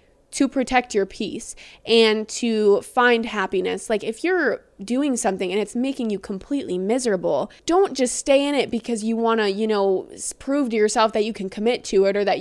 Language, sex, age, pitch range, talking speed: English, female, 20-39, 210-250 Hz, 200 wpm